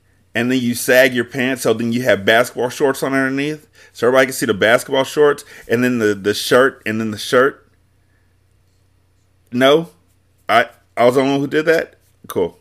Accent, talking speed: American, 195 wpm